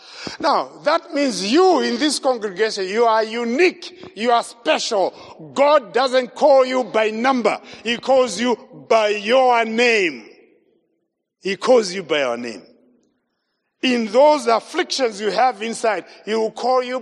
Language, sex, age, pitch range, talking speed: English, male, 50-69, 220-310 Hz, 145 wpm